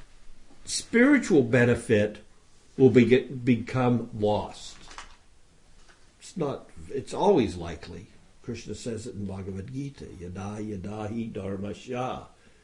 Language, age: English, 60-79